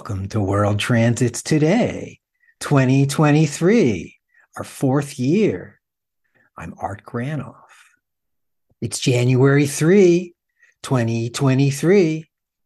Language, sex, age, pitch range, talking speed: English, male, 60-79, 110-155 Hz, 75 wpm